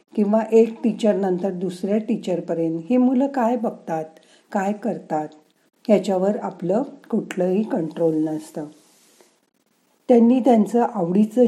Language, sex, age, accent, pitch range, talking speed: Marathi, female, 50-69, native, 175-235 Hz, 105 wpm